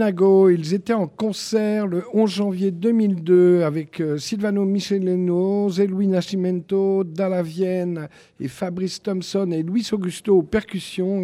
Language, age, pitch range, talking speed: French, 50-69, 135-185 Hz, 125 wpm